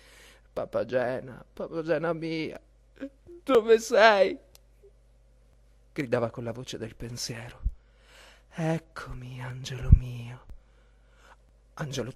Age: 30-49